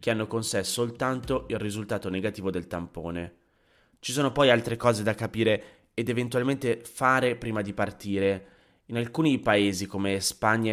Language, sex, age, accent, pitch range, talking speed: Italian, male, 30-49, native, 95-115 Hz, 155 wpm